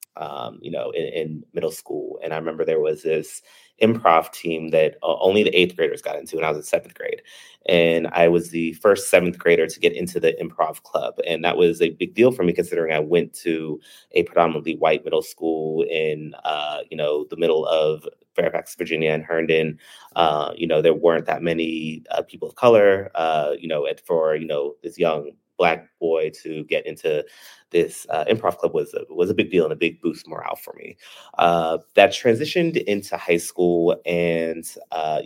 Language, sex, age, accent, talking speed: English, male, 30-49, American, 200 wpm